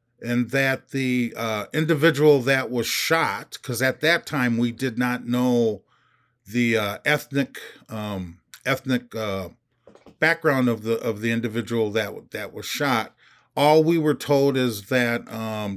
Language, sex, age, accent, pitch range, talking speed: English, male, 40-59, American, 120-150 Hz, 150 wpm